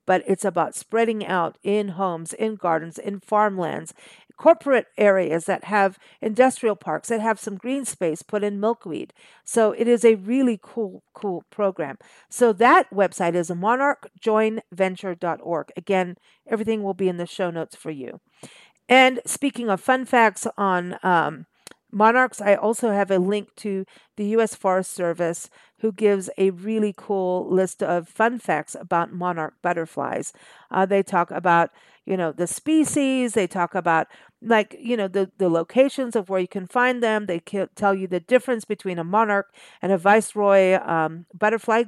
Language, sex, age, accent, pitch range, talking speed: English, female, 50-69, American, 175-220 Hz, 165 wpm